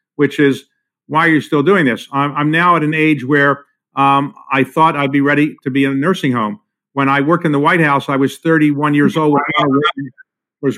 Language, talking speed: English, 235 wpm